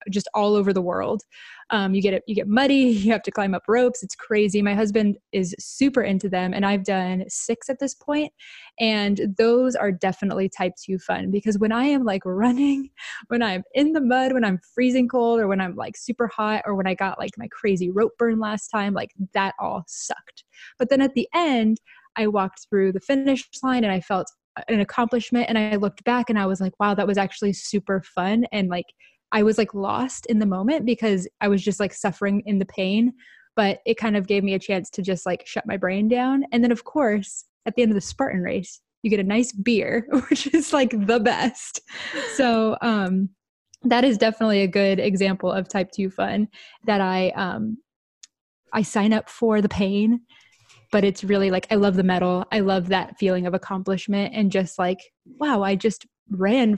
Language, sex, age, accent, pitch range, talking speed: English, female, 20-39, American, 195-235 Hz, 215 wpm